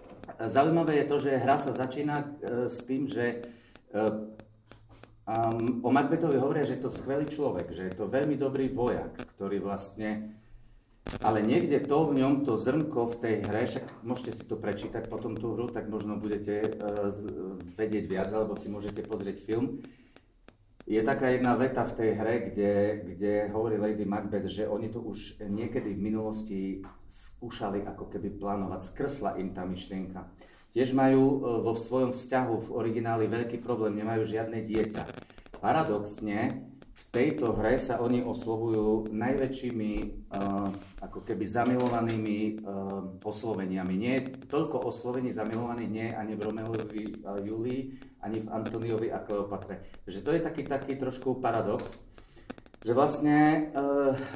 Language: Slovak